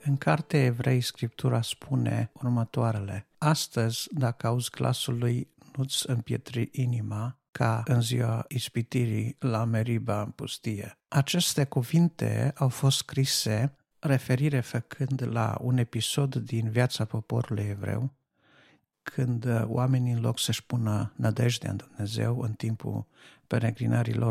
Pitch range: 110-130 Hz